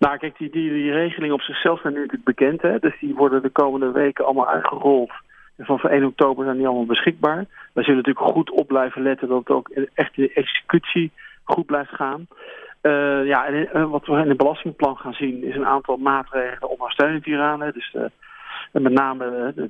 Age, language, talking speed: 40-59, Dutch, 215 wpm